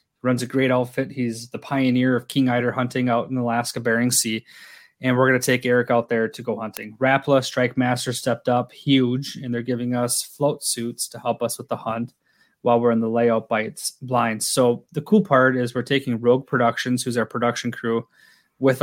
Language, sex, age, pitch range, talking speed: English, male, 20-39, 115-130 Hz, 205 wpm